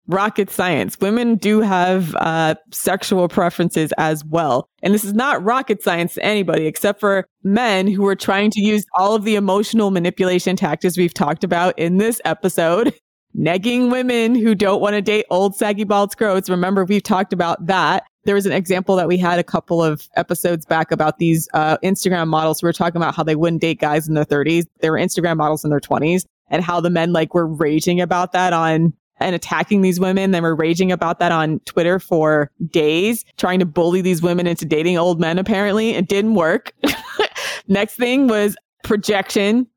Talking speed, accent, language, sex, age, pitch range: 195 wpm, American, English, female, 20-39, 170-210 Hz